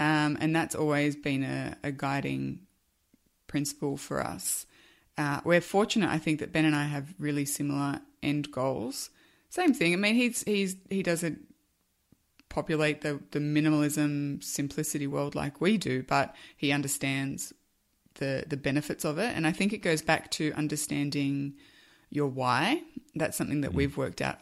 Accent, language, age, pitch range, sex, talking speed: Australian, English, 20-39, 145-170 Hz, female, 160 wpm